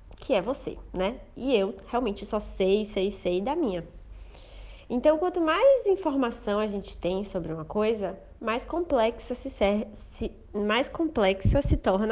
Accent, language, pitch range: Brazilian, Portuguese, 200-280 Hz